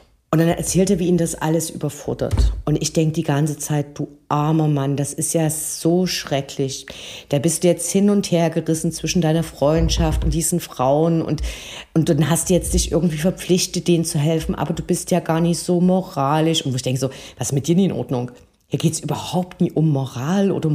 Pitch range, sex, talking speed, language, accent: 145-175 Hz, female, 215 wpm, German, German